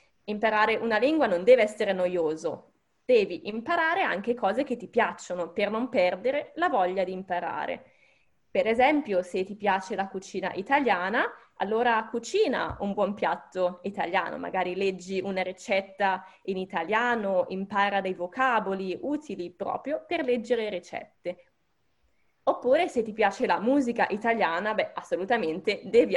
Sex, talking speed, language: female, 135 wpm, Italian